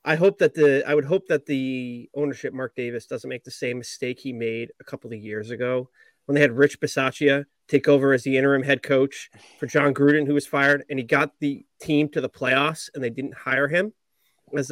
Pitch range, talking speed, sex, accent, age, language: 135-185 Hz, 230 wpm, male, American, 30-49, English